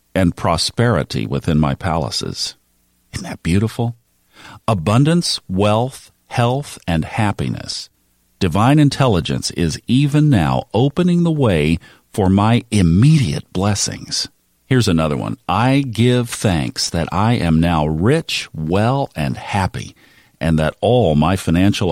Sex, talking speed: male, 120 wpm